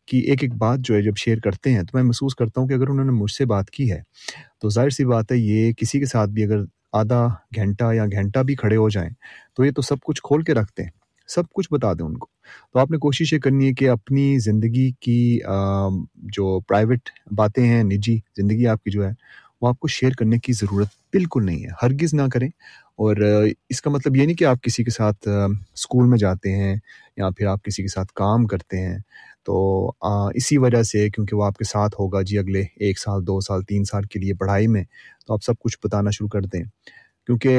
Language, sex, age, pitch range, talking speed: Urdu, male, 30-49, 100-125 Hz, 235 wpm